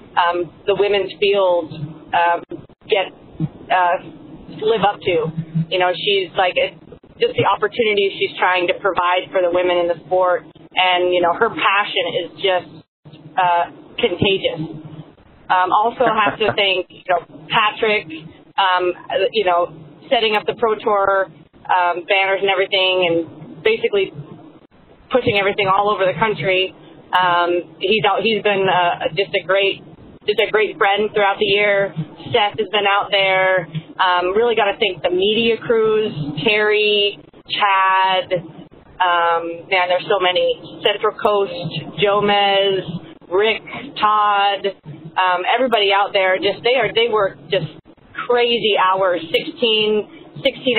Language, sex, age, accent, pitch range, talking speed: English, female, 30-49, American, 175-210 Hz, 145 wpm